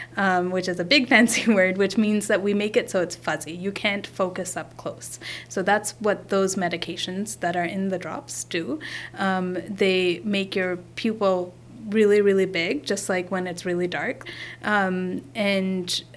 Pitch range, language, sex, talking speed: 180-210 Hz, English, female, 180 wpm